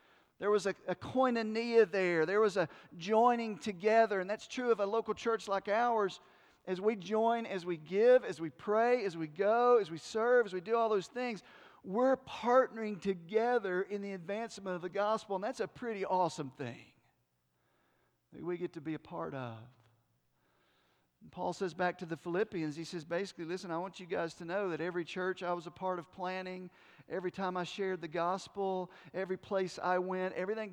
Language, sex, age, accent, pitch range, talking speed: English, male, 40-59, American, 170-215 Hz, 195 wpm